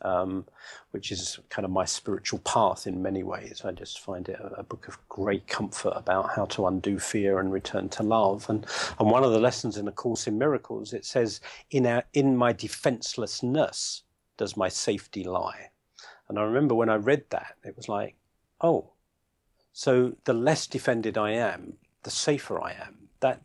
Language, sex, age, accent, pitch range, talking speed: English, male, 40-59, British, 100-120 Hz, 190 wpm